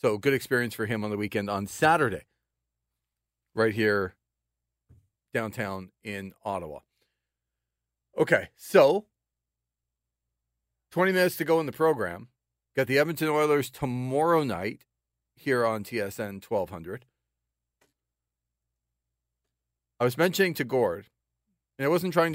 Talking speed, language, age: 115 wpm, English, 40-59